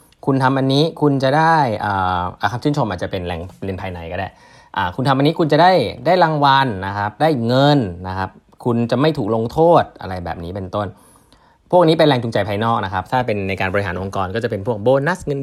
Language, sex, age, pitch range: Thai, male, 20-39, 95-130 Hz